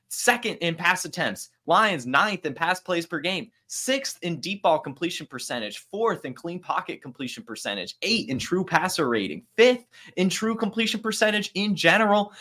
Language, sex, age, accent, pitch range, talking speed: English, male, 20-39, American, 145-220 Hz, 170 wpm